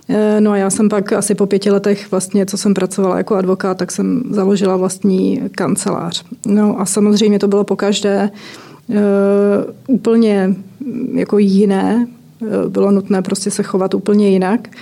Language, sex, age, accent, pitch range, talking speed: Czech, female, 30-49, native, 195-215 Hz, 155 wpm